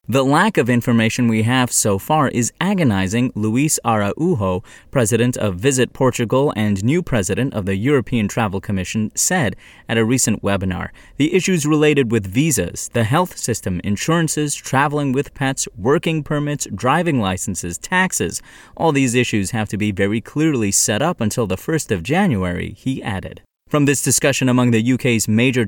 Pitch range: 105-135 Hz